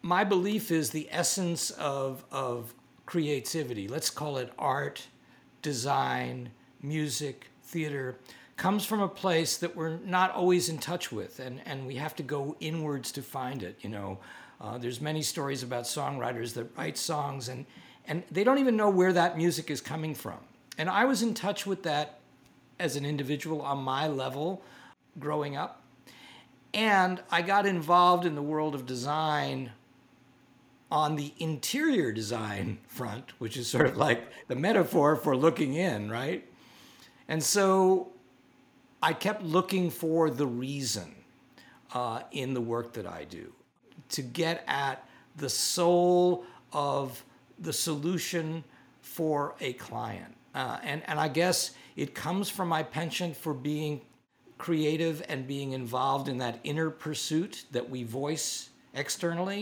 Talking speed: 150 wpm